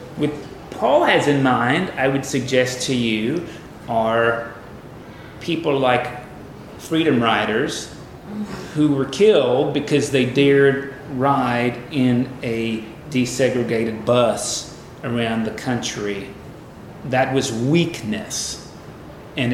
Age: 40-59